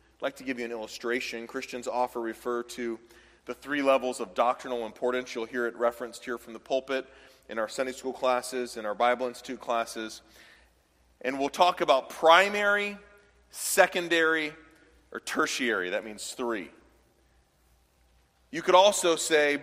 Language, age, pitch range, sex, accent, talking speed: English, 40-59, 125-180 Hz, male, American, 155 wpm